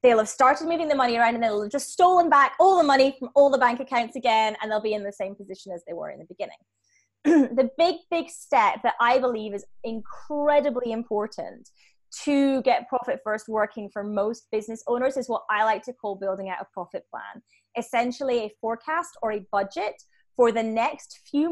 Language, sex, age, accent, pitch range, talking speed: English, female, 20-39, British, 215-275 Hz, 210 wpm